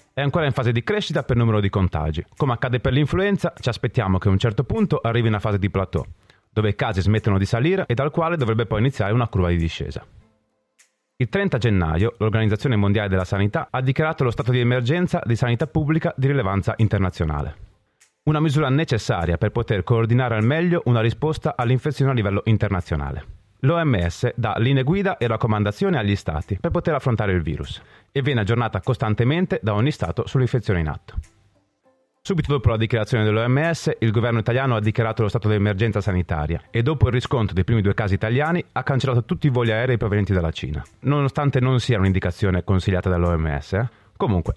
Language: Italian